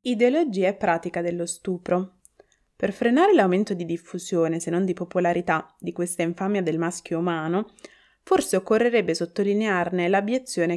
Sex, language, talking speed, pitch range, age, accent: female, Italian, 135 wpm, 175-235 Hz, 20-39, native